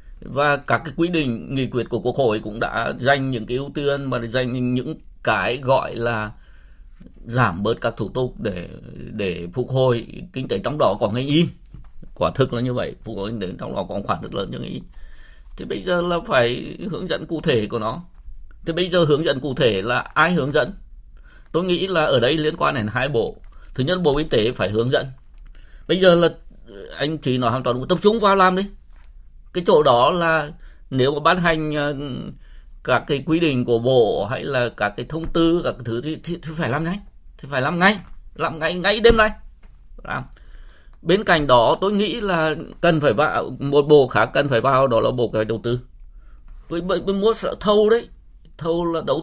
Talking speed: 215 wpm